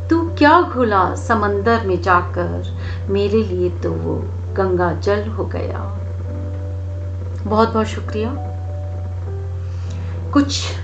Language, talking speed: Hindi, 95 wpm